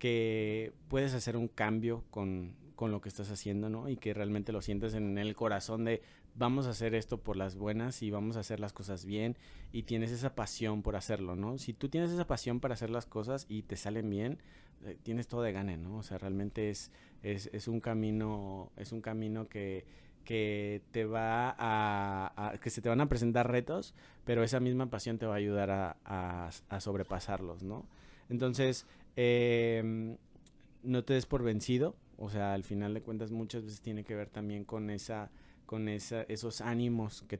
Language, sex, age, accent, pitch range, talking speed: Spanish, male, 30-49, Mexican, 105-120 Hz, 195 wpm